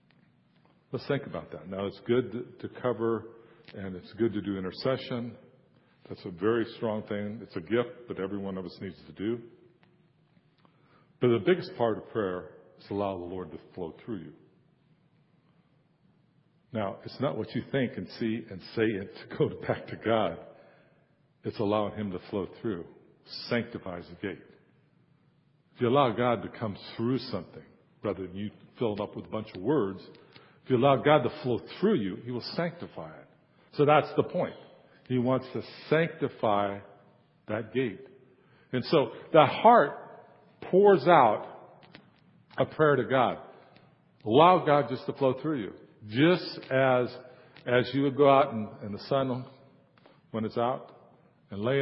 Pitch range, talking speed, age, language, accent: 110-145 Hz, 165 wpm, 60-79, English, American